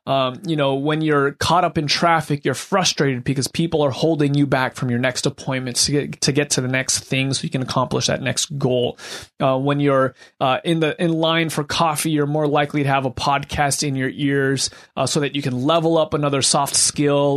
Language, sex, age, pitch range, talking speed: English, male, 30-49, 135-165 Hz, 230 wpm